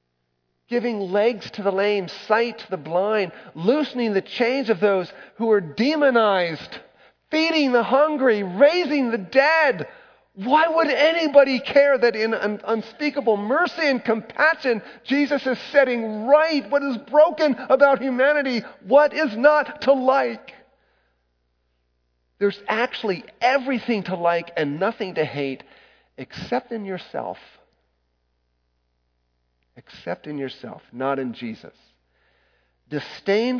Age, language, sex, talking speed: 40-59, English, male, 120 wpm